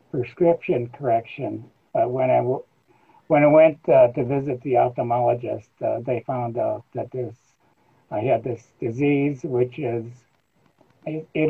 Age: 60-79